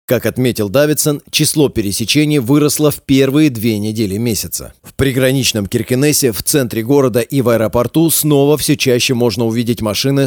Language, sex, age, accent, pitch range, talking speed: Russian, male, 30-49, native, 115-145 Hz, 150 wpm